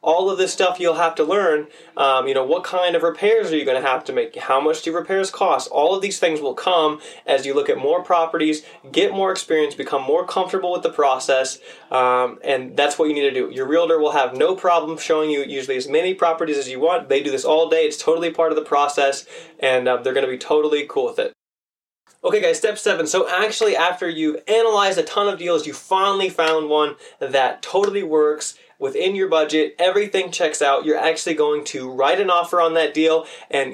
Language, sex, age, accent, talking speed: English, male, 20-39, American, 225 wpm